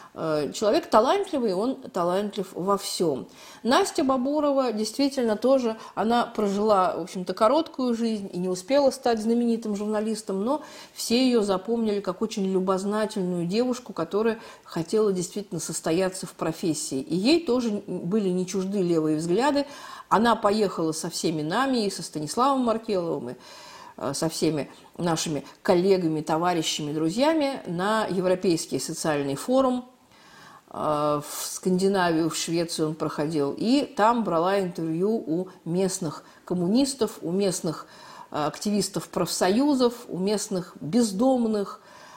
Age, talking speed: 40-59, 120 wpm